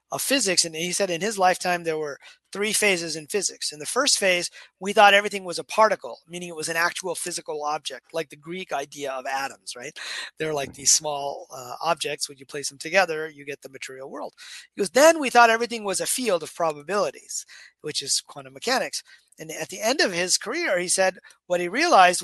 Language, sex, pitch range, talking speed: English, male, 155-210 Hz, 215 wpm